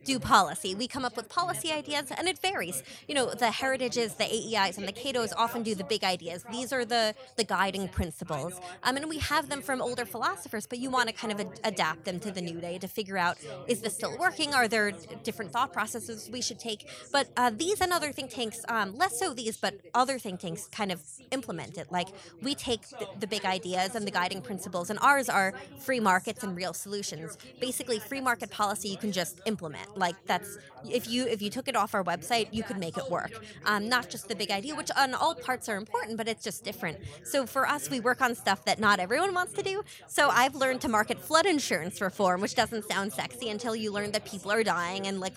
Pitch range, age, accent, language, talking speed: 190-245 Hz, 20-39, American, English, 235 wpm